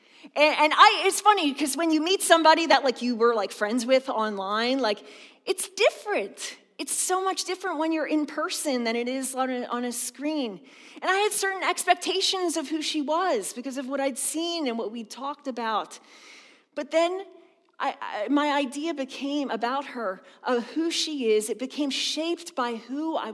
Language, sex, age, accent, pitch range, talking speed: English, female, 30-49, American, 235-305 Hz, 190 wpm